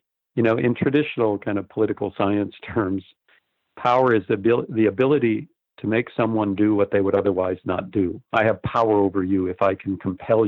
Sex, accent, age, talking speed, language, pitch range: male, American, 50-69, 185 wpm, English, 100-115 Hz